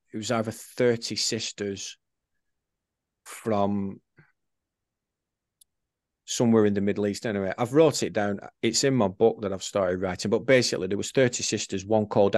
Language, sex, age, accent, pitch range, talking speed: English, male, 40-59, British, 95-110 Hz, 155 wpm